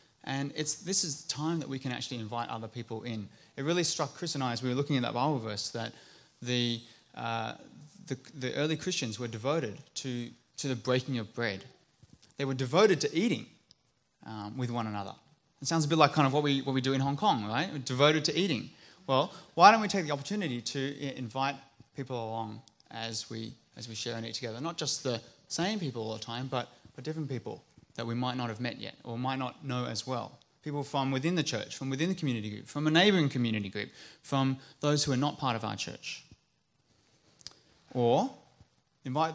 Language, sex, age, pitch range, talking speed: English, male, 20-39, 120-155 Hz, 215 wpm